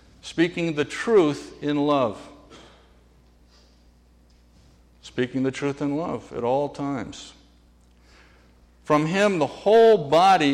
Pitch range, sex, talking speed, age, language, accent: 125-180 Hz, male, 100 wpm, 60-79, English, American